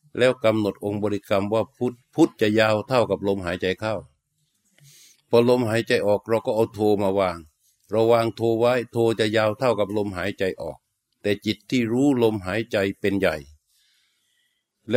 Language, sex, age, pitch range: Thai, male, 60-79, 100-120 Hz